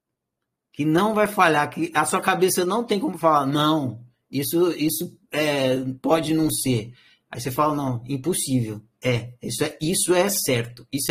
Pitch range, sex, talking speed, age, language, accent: 155-215 Hz, male, 155 wpm, 60-79, Portuguese, Brazilian